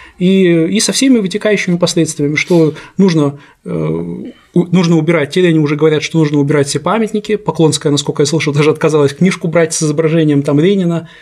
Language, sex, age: Russian, male, 20-39